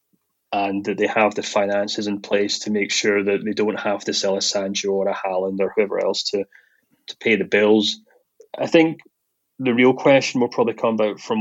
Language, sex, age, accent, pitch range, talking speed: English, male, 20-39, British, 105-115 Hz, 210 wpm